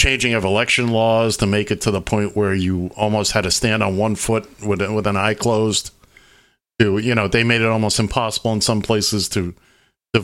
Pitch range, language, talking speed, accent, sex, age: 100-120 Hz, English, 215 wpm, American, male, 50-69